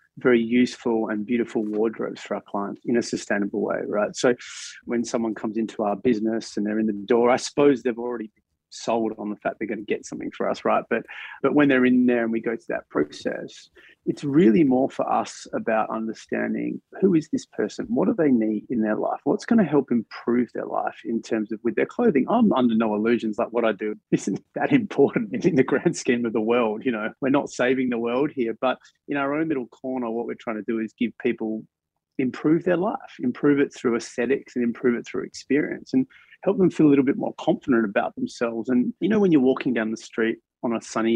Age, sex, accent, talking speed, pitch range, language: 30-49, male, Australian, 235 wpm, 115-130 Hz, English